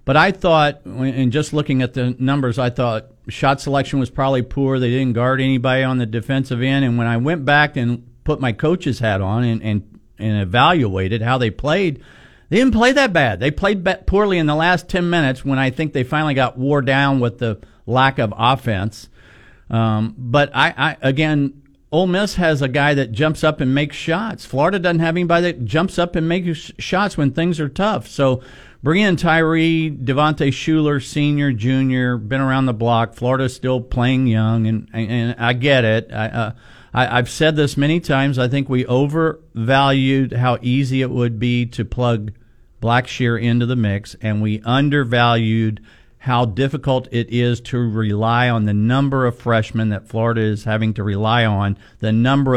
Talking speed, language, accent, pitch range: 190 wpm, English, American, 115-145 Hz